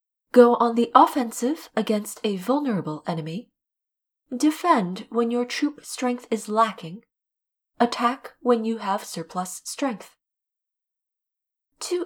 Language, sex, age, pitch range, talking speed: English, female, 30-49, 210-275 Hz, 110 wpm